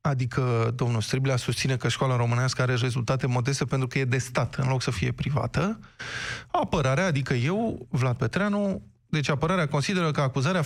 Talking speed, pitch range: 170 wpm, 130-165 Hz